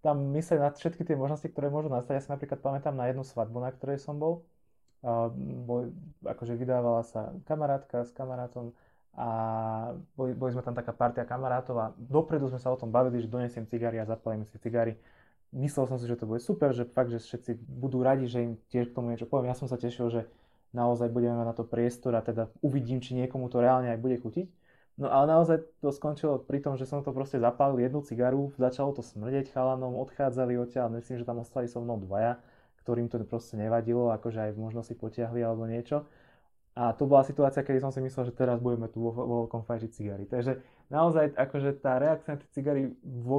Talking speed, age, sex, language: 215 wpm, 20-39, male, Slovak